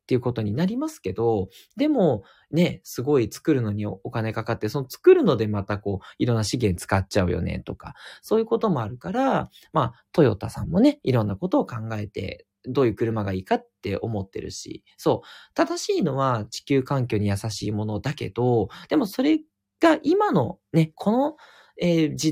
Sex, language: male, Japanese